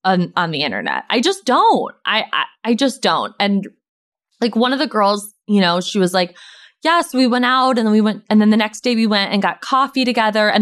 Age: 20-39